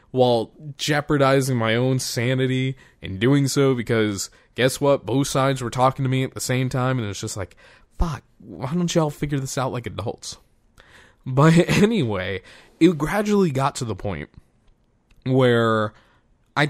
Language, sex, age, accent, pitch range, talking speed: English, male, 20-39, American, 105-130 Hz, 160 wpm